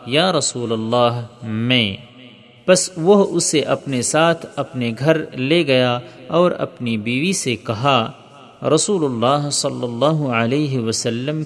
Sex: male